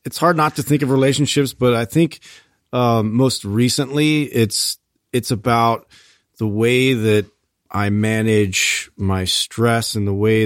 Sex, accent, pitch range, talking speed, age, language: male, American, 95-115 Hz, 150 wpm, 40-59, English